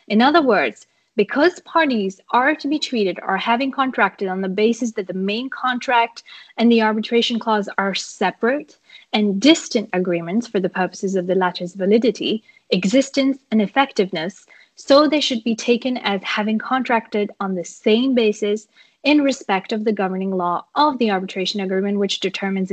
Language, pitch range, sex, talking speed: English, 205-260 Hz, female, 165 wpm